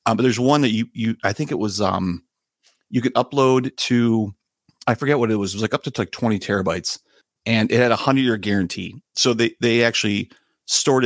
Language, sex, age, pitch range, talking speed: English, male, 30-49, 95-120 Hz, 220 wpm